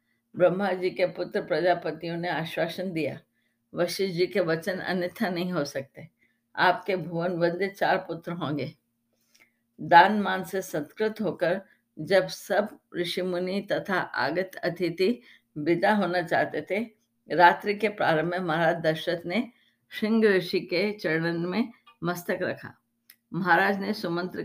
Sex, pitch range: female, 155-190 Hz